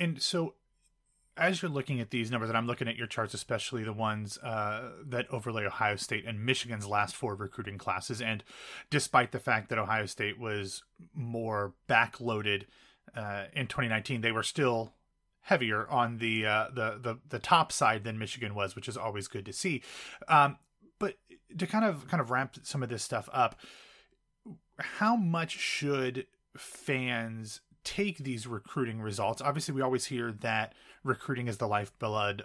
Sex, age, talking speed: male, 30-49, 170 wpm